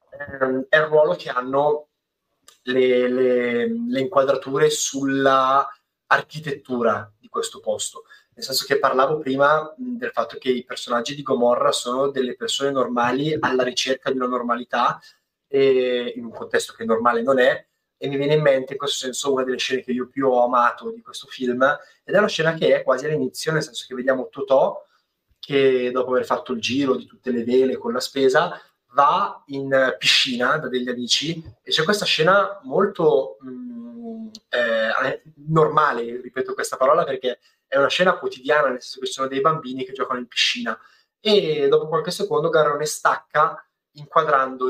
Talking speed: 170 wpm